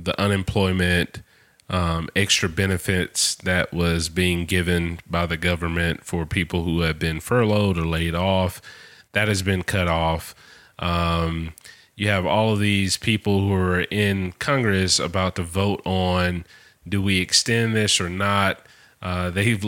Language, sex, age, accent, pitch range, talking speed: English, male, 30-49, American, 85-100 Hz, 150 wpm